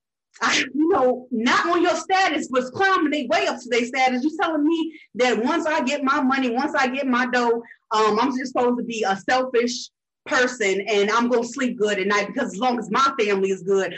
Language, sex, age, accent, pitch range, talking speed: English, female, 20-39, American, 205-275 Hz, 230 wpm